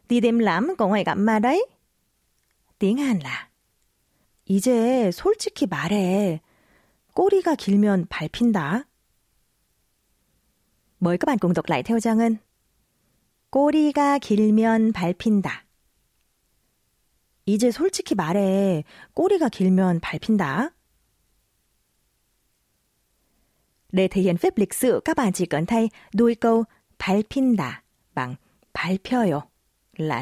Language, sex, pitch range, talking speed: Vietnamese, female, 180-240 Hz, 65 wpm